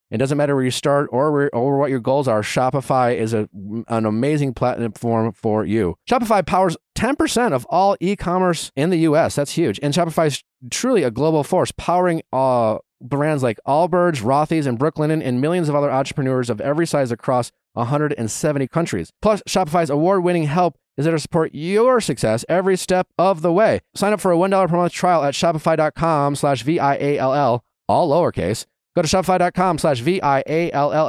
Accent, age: American, 30-49